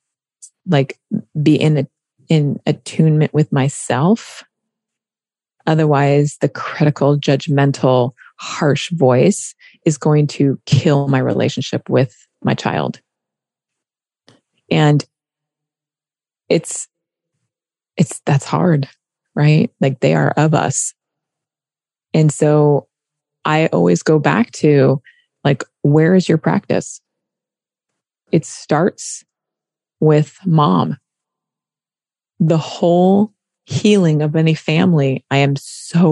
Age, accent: 20-39, American